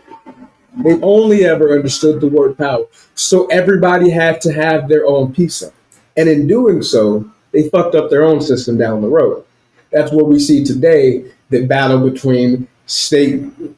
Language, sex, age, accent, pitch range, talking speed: English, male, 30-49, American, 130-160 Hz, 160 wpm